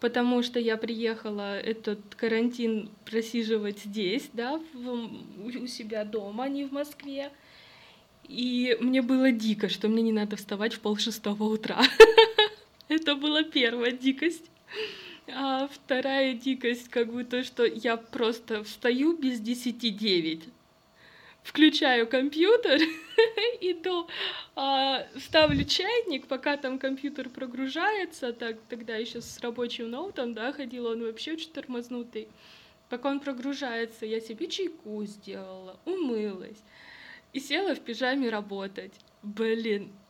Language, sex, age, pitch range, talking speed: Russian, female, 20-39, 225-275 Hz, 120 wpm